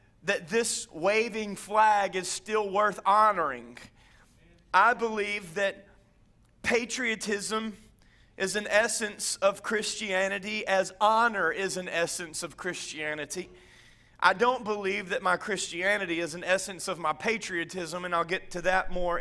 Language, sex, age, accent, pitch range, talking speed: English, male, 30-49, American, 185-215 Hz, 130 wpm